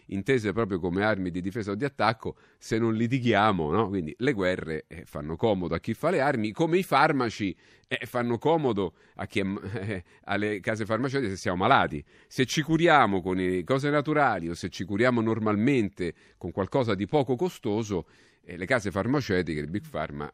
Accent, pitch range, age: native, 95-125 Hz, 40-59